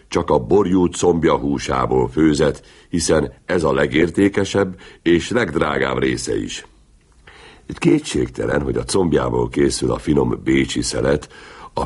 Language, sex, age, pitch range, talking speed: Hungarian, male, 60-79, 70-95 Hz, 115 wpm